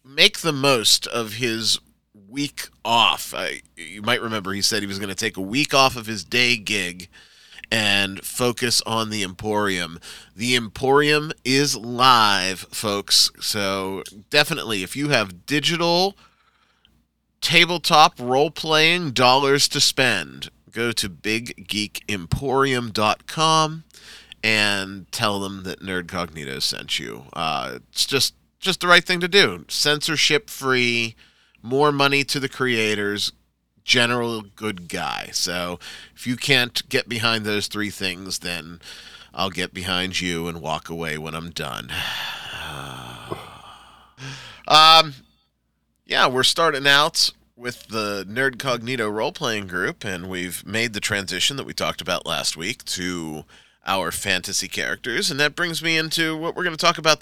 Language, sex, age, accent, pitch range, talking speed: English, male, 30-49, American, 95-135 Hz, 135 wpm